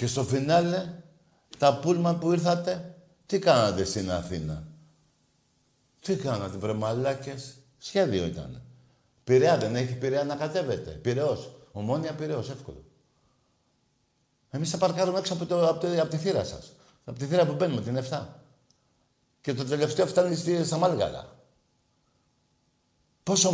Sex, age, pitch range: male, 60-79, 115-165 Hz